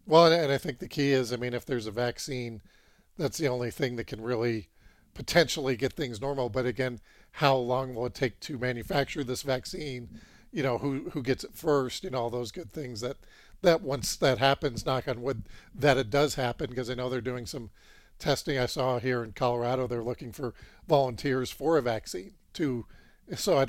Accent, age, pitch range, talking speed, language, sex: American, 50-69, 125-145 Hz, 210 wpm, English, male